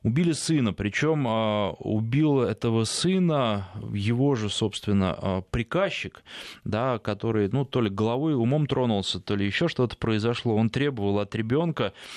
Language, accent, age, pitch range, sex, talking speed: Russian, native, 20-39, 105-130 Hz, male, 135 wpm